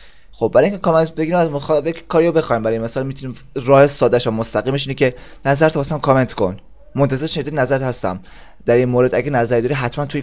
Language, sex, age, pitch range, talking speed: Persian, male, 20-39, 115-145 Hz, 205 wpm